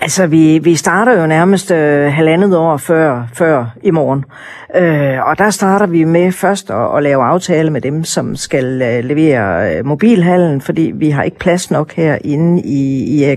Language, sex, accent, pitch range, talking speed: Danish, female, native, 160-195 Hz, 180 wpm